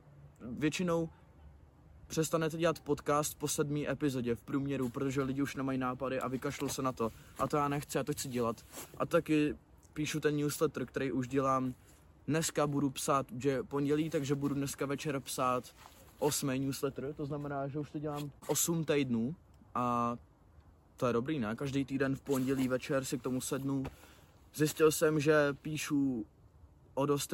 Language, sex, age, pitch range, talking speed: Czech, male, 20-39, 115-150 Hz, 165 wpm